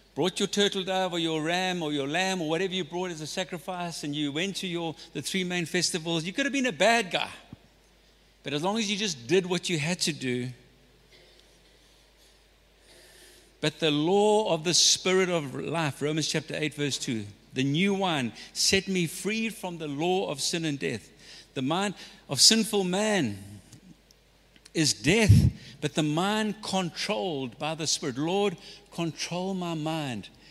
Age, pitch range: 60-79, 145-190 Hz